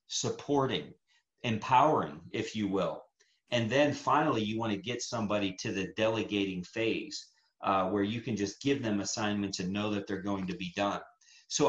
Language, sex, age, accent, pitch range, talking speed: English, male, 40-59, American, 100-130 Hz, 175 wpm